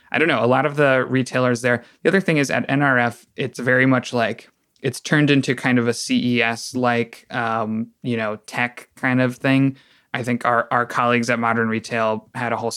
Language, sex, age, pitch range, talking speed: English, male, 20-39, 115-125 Hz, 210 wpm